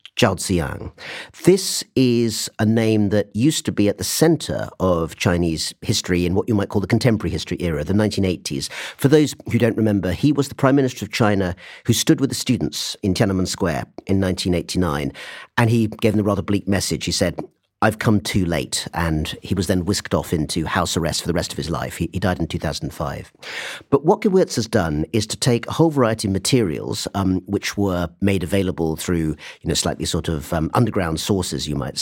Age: 50-69